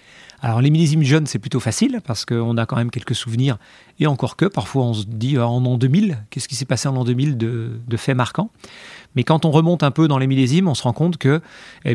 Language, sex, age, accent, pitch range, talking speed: French, male, 30-49, French, 120-150 Hz, 250 wpm